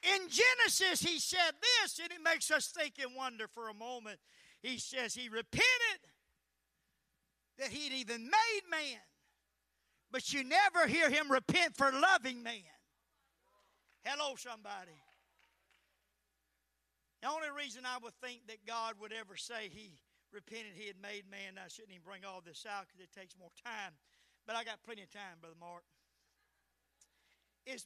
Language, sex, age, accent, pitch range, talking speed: English, male, 50-69, American, 190-250 Hz, 160 wpm